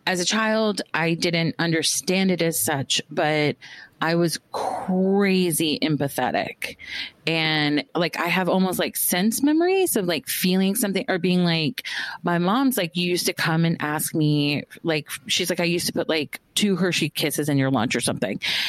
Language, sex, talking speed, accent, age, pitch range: English, female, 175 wpm, American, 30-49, 160-200 Hz